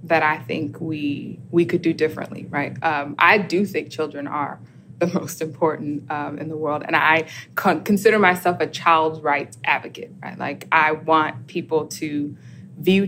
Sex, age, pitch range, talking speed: female, 20-39, 155-180 Hz, 175 wpm